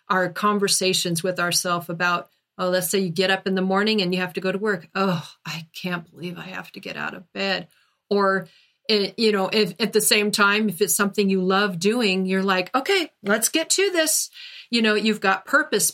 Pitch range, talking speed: 185-230 Hz, 220 wpm